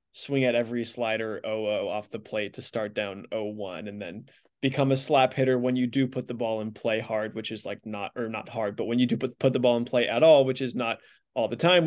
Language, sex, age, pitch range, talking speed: English, male, 20-39, 115-140 Hz, 265 wpm